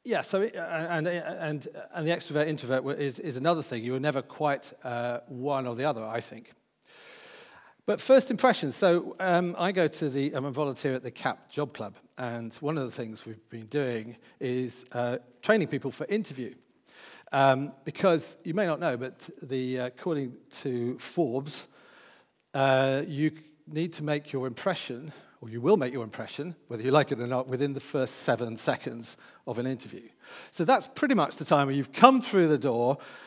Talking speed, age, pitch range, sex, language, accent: 185 wpm, 40-59, 125-155 Hz, male, English, British